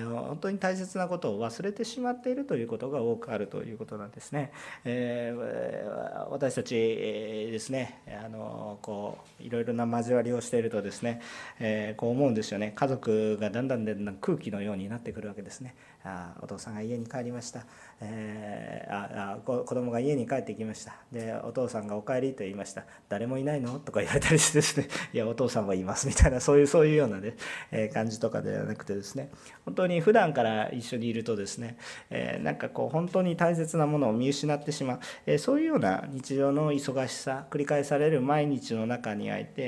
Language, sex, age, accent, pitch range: Japanese, male, 40-59, native, 110-140 Hz